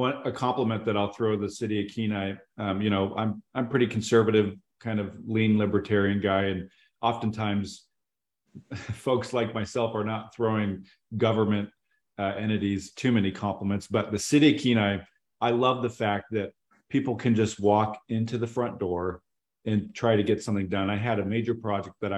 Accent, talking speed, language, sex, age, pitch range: American, 175 wpm, English, male, 40-59, 100-115 Hz